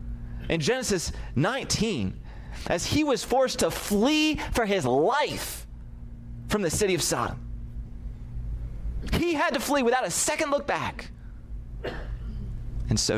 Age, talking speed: 30-49, 125 wpm